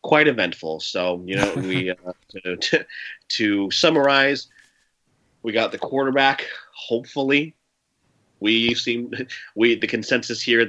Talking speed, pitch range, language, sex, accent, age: 130 wpm, 95-110 Hz, English, male, American, 30-49